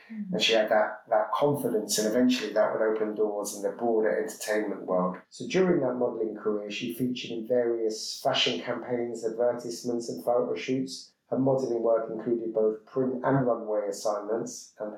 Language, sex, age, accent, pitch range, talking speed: English, male, 30-49, British, 110-125 Hz, 170 wpm